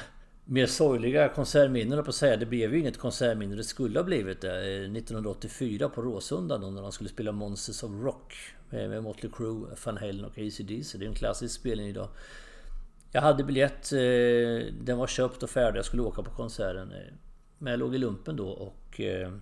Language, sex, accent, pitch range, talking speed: English, male, Swedish, 100-125 Hz, 175 wpm